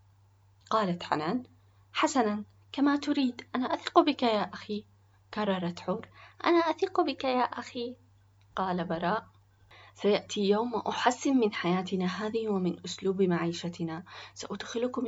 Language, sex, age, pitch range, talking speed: Arabic, female, 20-39, 160-240 Hz, 115 wpm